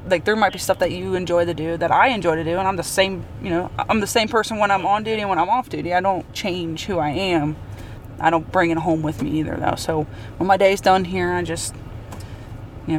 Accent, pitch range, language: American, 150-185 Hz, English